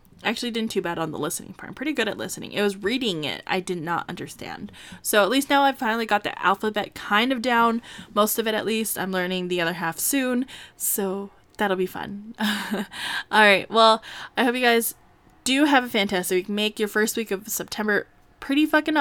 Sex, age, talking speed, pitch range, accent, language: female, 20-39, 215 wpm, 190-245 Hz, American, English